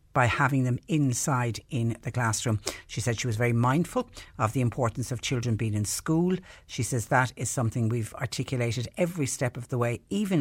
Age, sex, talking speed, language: 60-79, female, 195 wpm, English